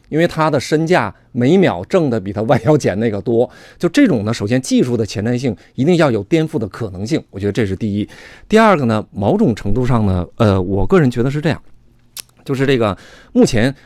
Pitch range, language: 105-155 Hz, Chinese